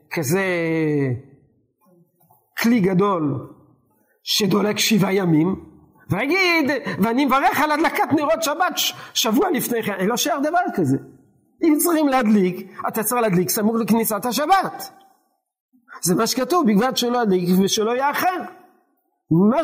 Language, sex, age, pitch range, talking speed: Hebrew, male, 50-69, 195-305 Hz, 115 wpm